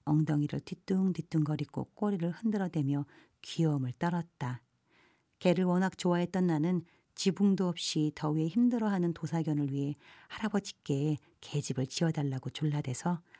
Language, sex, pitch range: Korean, female, 145-180 Hz